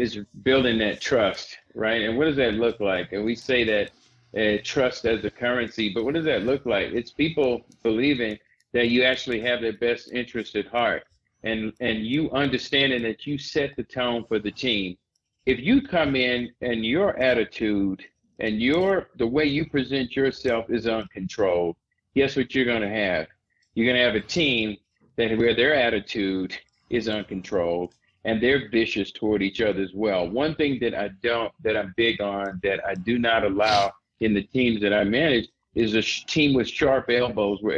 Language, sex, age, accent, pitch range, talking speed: English, male, 40-59, American, 110-135 Hz, 185 wpm